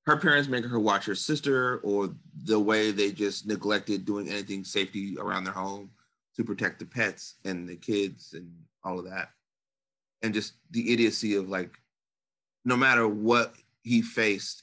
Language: English